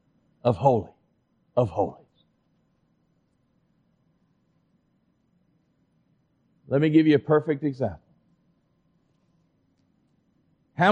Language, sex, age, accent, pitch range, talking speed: English, male, 50-69, American, 130-215 Hz, 65 wpm